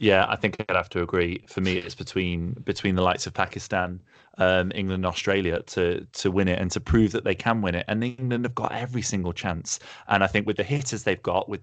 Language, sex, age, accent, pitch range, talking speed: English, male, 20-39, British, 90-115 Hz, 250 wpm